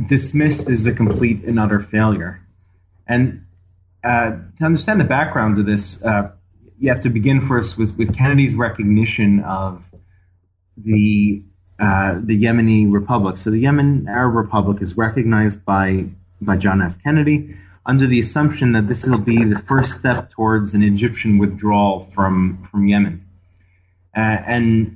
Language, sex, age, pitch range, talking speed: English, male, 30-49, 95-115 Hz, 150 wpm